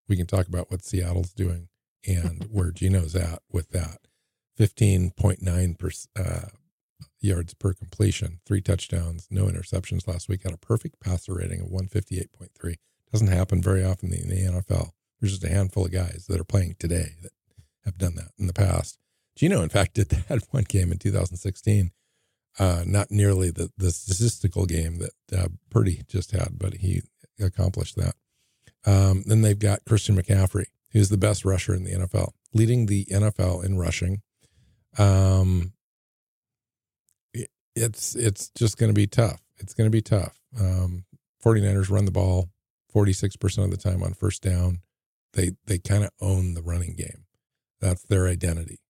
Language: English